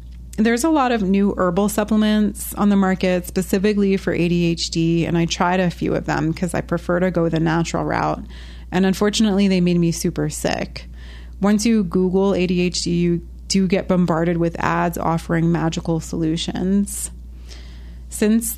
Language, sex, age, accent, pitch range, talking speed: English, female, 30-49, American, 165-190 Hz, 160 wpm